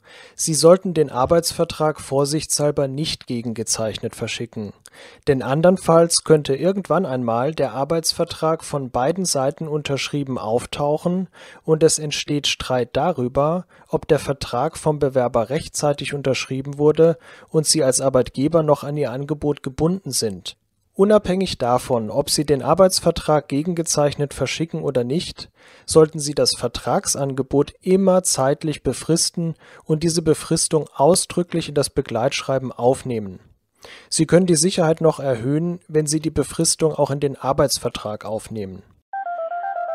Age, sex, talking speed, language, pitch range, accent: 40-59, male, 125 wpm, German, 125-165 Hz, German